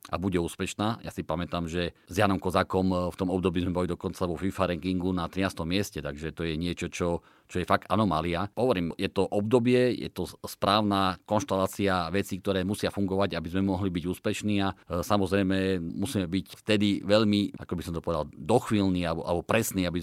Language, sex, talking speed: Slovak, male, 190 wpm